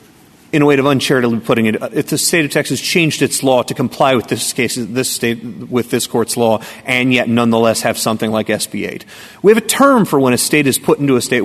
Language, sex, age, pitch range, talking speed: English, male, 30-49, 115-140 Hz, 240 wpm